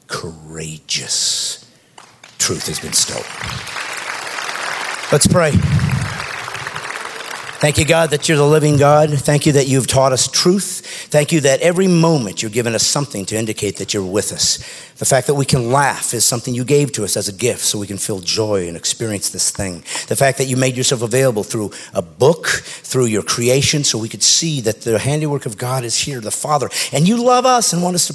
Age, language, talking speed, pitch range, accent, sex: 50-69, English, 205 wpm, 110-145 Hz, American, male